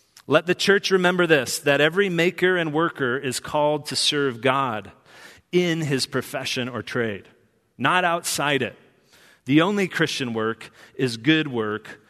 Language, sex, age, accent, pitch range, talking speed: English, male, 30-49, American, 115-150 Hz, 150 wpm